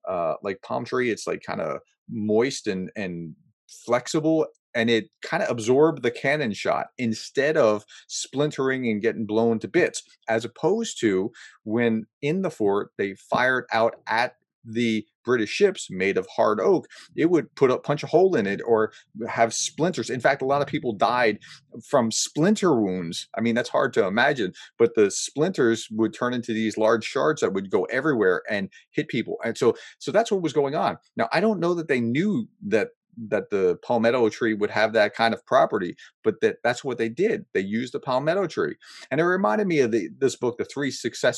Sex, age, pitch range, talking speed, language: male, 30-49, 115-165 Hz, 200 wpm, English